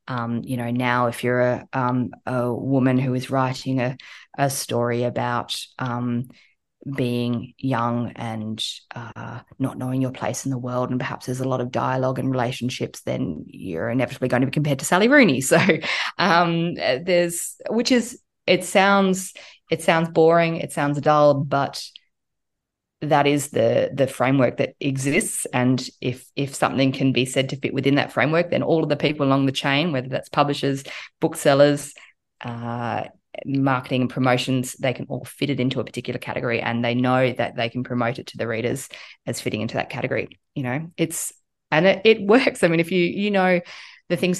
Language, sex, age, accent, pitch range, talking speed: English, female, 20-39, Australian, 125-155 Hz, 185 wpm